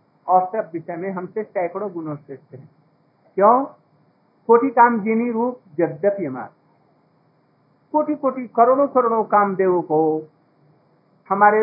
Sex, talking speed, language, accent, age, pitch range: male, 95 wpm, Hindi, native, 60-79, 165-225 Hz